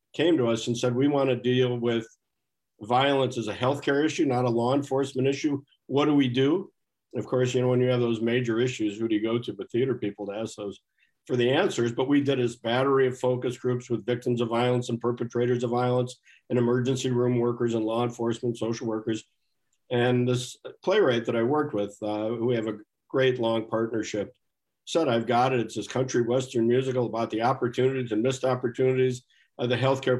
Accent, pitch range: American, 115-130 Hz